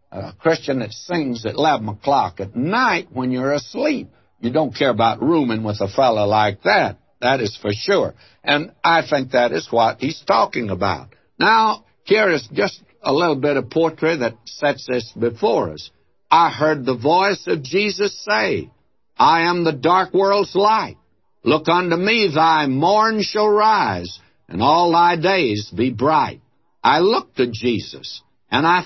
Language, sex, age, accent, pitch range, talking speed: English, male, 60-79, American, 110-165 Hz, 170 wpm